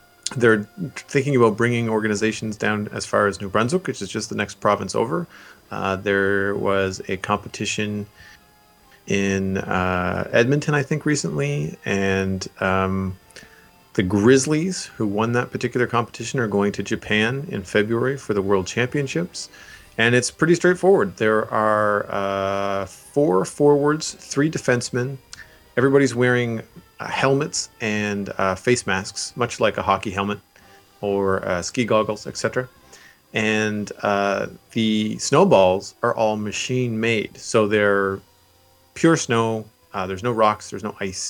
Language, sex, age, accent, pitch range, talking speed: English, male, 40-59, American, 100-125 Hz, 140 wpm